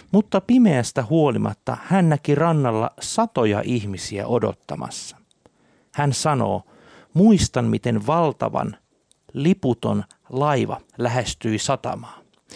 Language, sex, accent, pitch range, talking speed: Finnish, male, native, 115-165 Hz, 85 wpm